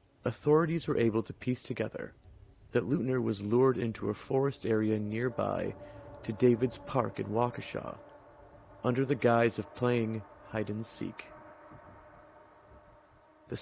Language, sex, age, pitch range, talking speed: English, male, 40-59, 105-125 Hz, 120 wpm